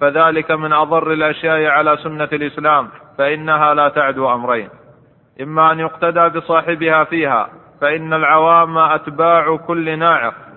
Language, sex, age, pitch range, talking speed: Arabic, male, 30-49, 155-165 Hz, 120 wpm